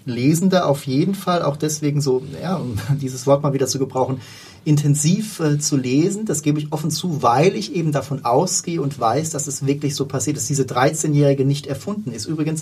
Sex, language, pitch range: male, German, 140-170 Hz